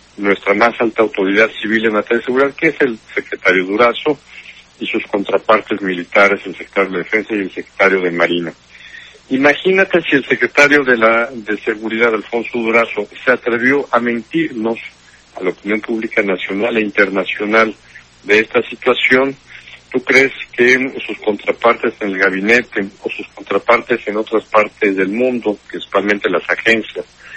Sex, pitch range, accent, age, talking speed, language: male, 105-135 Hz, Mexican, 60-79, 155 wpm, Spanish